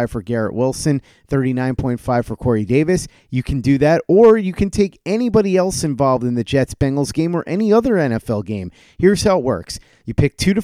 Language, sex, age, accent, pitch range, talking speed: English, male, 30-49, American, 125-160 Hz, 205 wpm